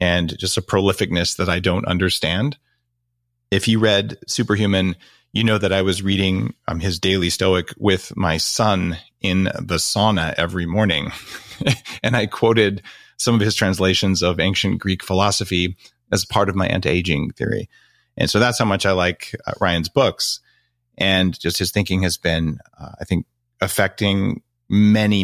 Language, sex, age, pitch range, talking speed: English, male, 40-59, 90-120 Hz, 160 wpm